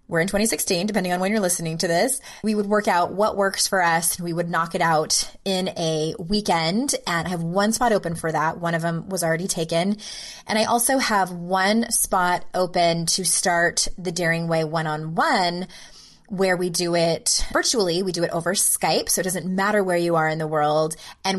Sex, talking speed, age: female, 210 wpm, 20-39